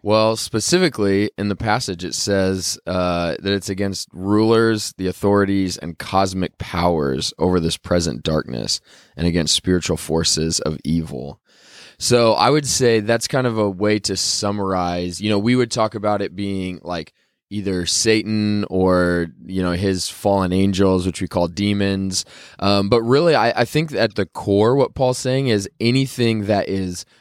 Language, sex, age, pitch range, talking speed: English, male, 20-39, 90-105 Hz, 165 wpm